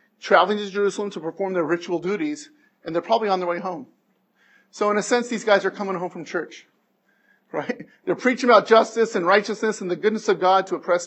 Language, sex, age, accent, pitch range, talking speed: English, male, 40-59, American, 185-215 Hz, 215 wpm